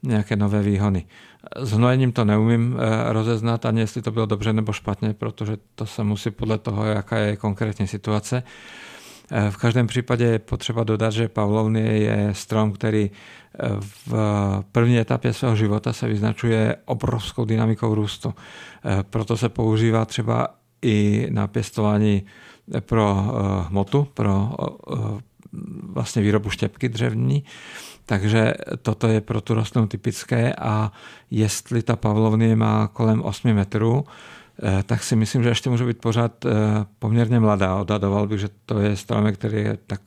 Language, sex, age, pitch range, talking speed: Czech, male, 50-69, 105-115 Hz, 140 wpm